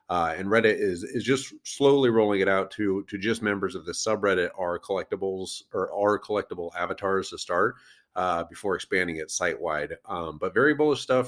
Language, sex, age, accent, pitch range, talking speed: English, male, 40-59, American, 85-110 Hz, 190 wpm